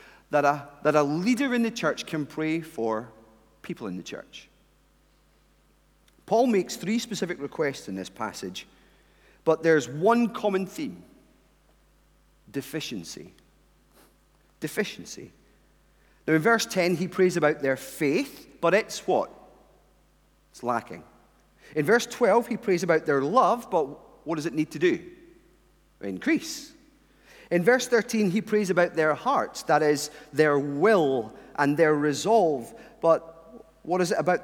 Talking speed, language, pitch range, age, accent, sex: 140 wpm, English, 150-230 Hz, 40-59, British, male